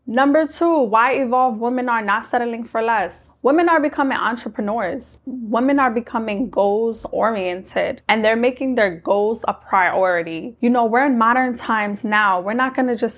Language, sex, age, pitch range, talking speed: English, female, 20-39, 200-240 Hz, 170 wpm